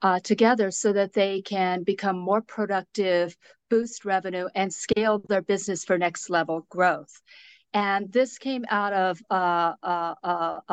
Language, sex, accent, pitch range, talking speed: English, female, American, 180-215 Hz, 150 wpm